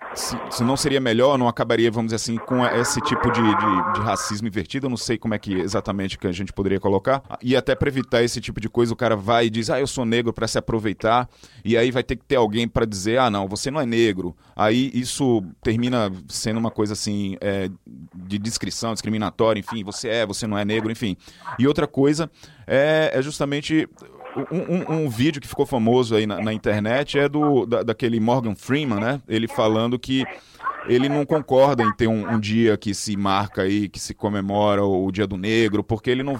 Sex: male